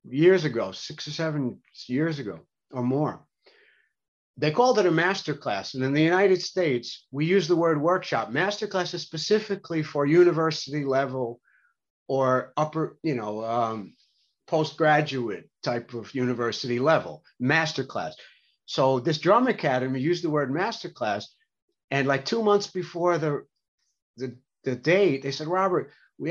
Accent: American